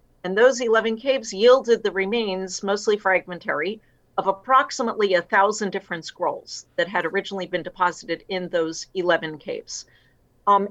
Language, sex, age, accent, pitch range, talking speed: English, female, 50-69, American, 180-225 Hz, 140 wpm